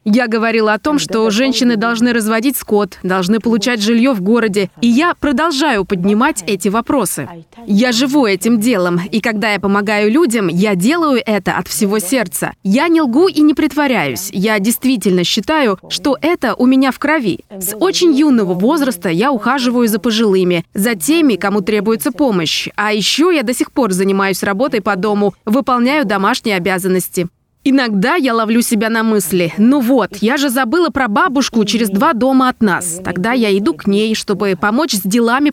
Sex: female